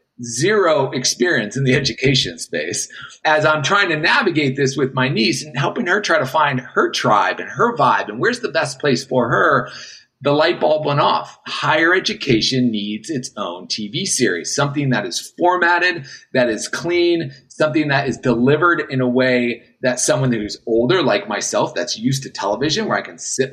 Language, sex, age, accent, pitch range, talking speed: English, male, 30-49, American, 125-155 Hz, 185 wpm